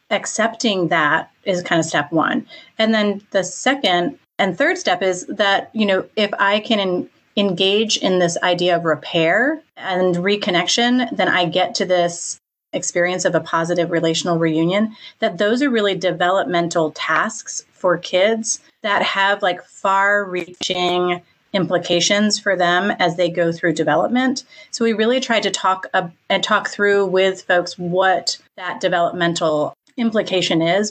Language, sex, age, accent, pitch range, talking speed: English, female, 30-49, American, 175-205 Hz, 150 wpm